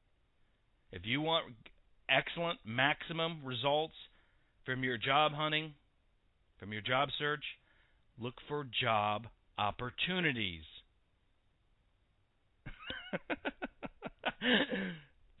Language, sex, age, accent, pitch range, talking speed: English, male, 40-59, American, 95-155 Hz, 70 wpm